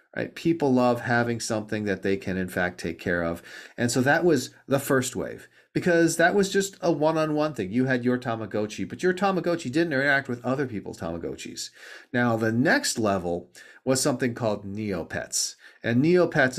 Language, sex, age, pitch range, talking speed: English, male, 40-59, 110-150 Hz, 180 wpm